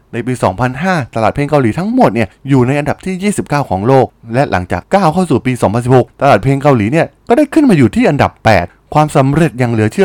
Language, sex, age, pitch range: Thai, male, 20-39, 110-170 Hz